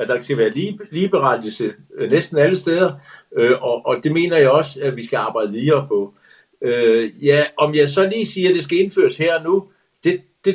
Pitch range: 140-195 Hz